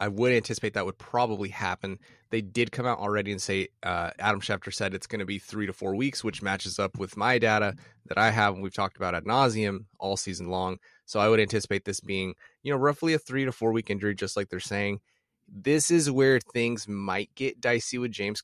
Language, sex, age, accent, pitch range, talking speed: English, male, 30-49, American, 100-120 Hz, 235 wpm